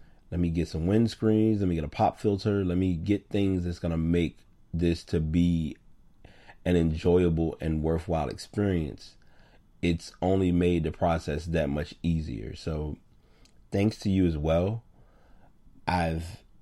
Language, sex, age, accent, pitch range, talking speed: English, male, 30-49, American, 80-95 Hz, 150 wpm